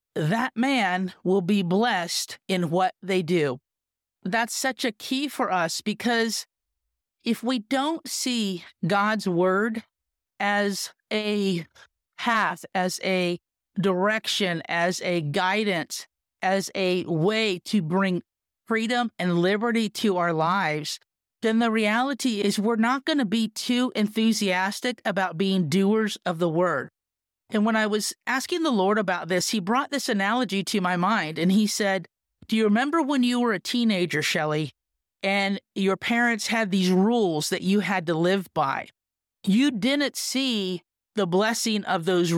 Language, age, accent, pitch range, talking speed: English, 50-69, American, 185-230 Hz, 150 wpm